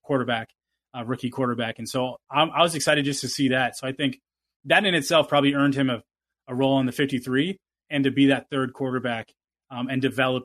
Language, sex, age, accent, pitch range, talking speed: English, male, 20-39, American, 130-145 Hz, 220 wpm